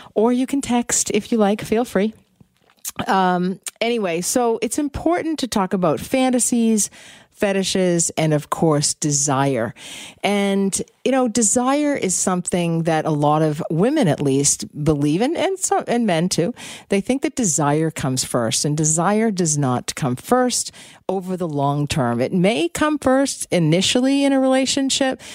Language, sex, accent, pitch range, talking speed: English, female, American, 140-210 Hz, 155 wpm